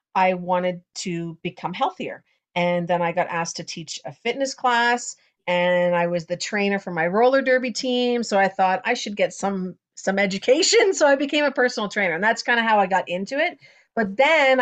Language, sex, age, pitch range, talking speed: English, female, 40-59, 175-215 Hz, 210 wpm